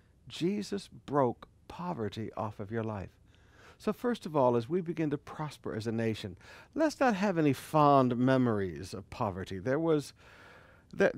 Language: English